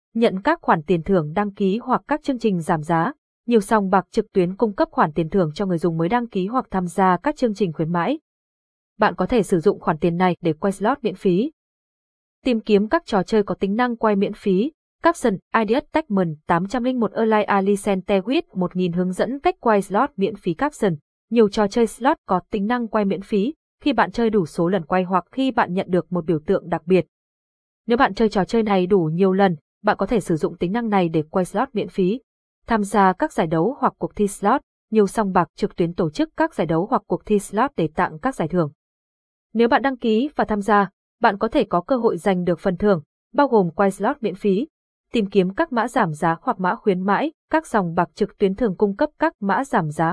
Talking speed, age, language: 235 wpm, 20-39, Vietnamese